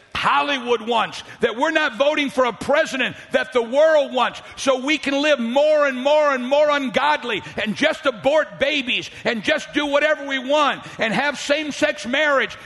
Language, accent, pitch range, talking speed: English, American, 265-315 Hz, 180 wpm